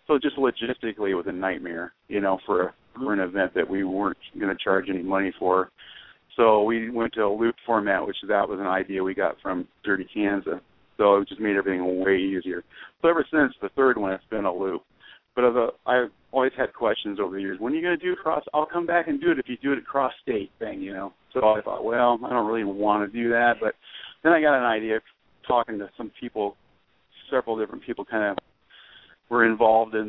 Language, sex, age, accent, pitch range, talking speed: English, male, 40-59, American, 105-120 Hz, 235 wpm